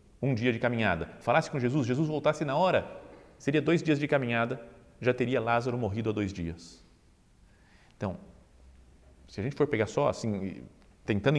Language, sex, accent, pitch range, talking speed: Portuguese, male, Brazilian, 100-155 Hz, 170 wpm